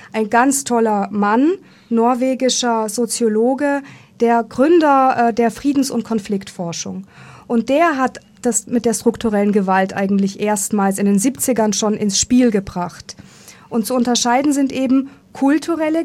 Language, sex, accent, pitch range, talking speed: German, female, German, 210-270 Hz, 135 wpm